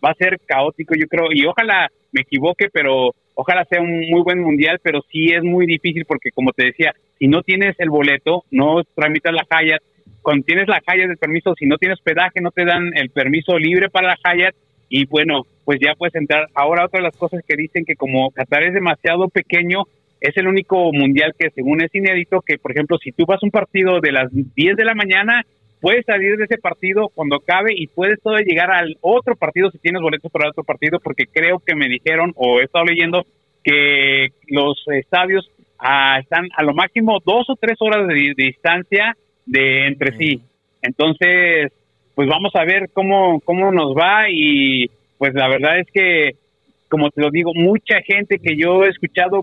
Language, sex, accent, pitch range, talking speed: Spanish, male, Mexican, 145-185 Hz, 205 wpm